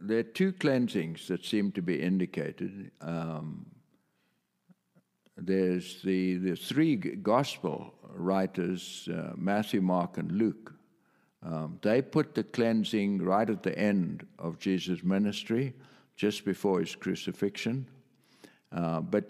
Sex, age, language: male, 60-79, English